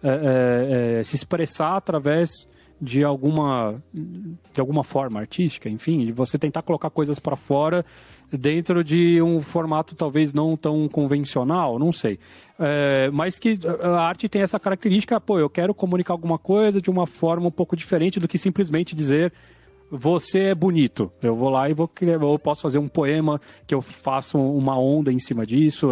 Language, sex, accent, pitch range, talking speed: Portuguese, male, Brazilian, 135-170 Hz, 175 wpm